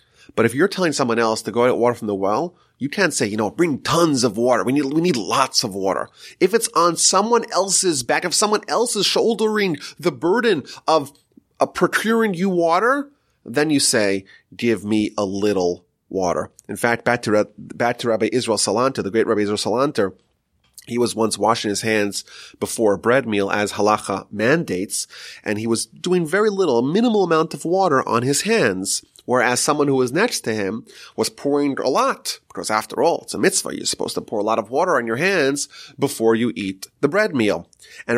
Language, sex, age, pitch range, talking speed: English, male, 30-49, 115-170 Hz, 205 wpm